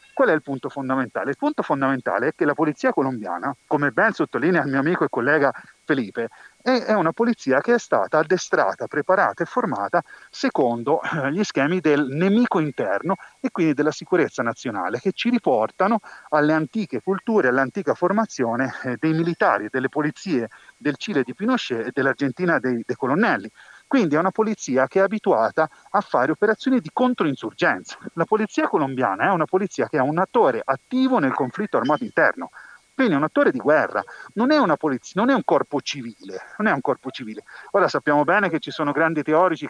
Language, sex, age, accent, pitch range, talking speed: Italian, male, 40-59, native, 135-215 Hz, 180 wpm